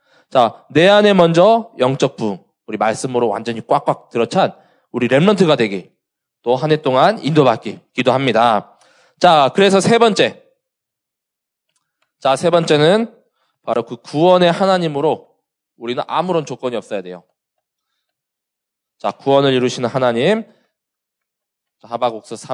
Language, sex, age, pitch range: Korean, male, 20-39, 130-185 Hz